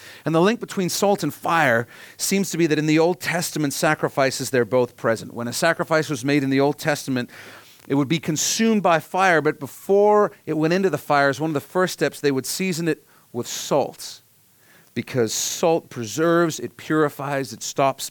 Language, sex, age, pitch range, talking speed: English, male, 40-59, 130-170 Hz, 195 wpm